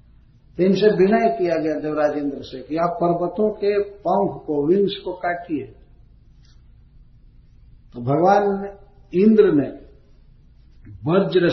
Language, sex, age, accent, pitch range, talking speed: Hindi, male, 60-79, native, 140-190 Hz, 120 wpm